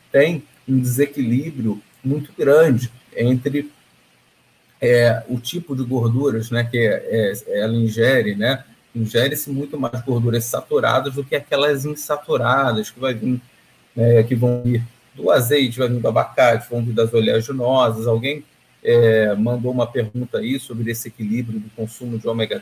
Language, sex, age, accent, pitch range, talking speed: Portuguese, male, 40-59, Brazilian, 115-135 Hz, 135 wpm